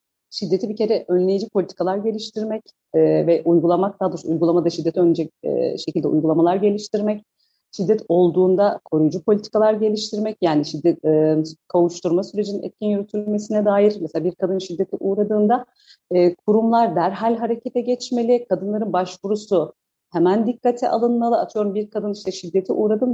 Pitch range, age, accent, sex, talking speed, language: 175-230 Hz, 40-59, native, female, 125 wpm, Turkish